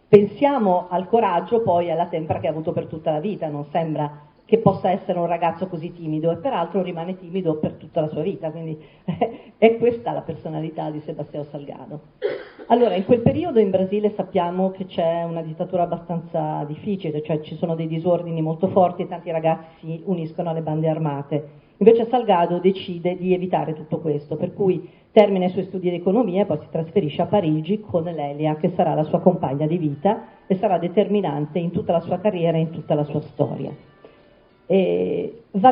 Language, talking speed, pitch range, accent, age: Italian, 190 wpm, 160-195 Hz, native, 40-59